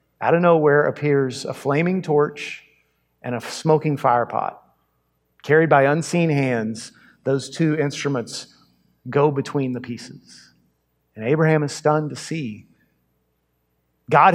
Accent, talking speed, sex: American, 125 wpm, male